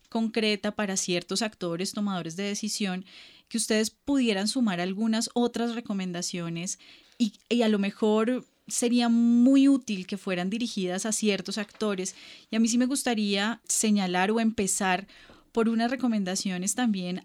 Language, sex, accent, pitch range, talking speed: Spanish, female, Colombian, 190-230 Hz, 145 wpm